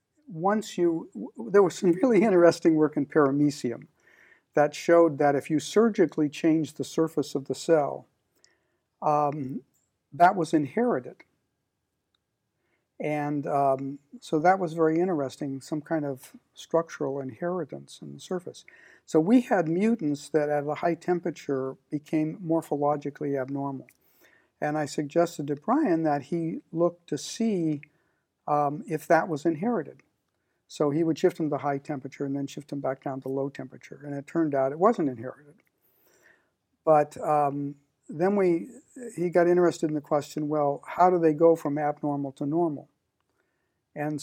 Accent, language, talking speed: American, English, 150 wpm